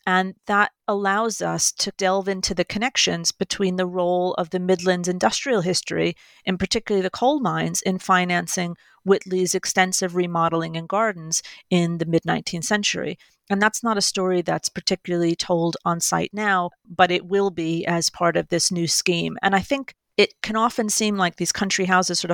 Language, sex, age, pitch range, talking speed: English, female, 40-59, 175-200 Hz, 180 wpm